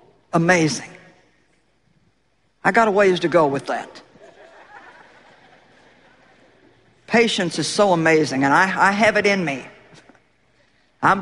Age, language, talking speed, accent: 60-79, English, 110 wpm, American